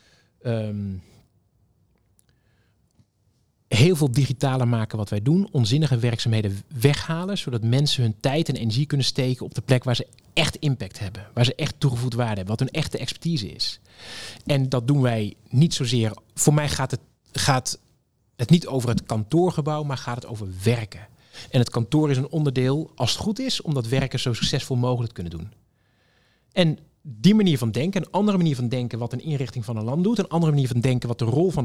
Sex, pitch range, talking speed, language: male, 115-155 Hz, 195 wpm, Dutch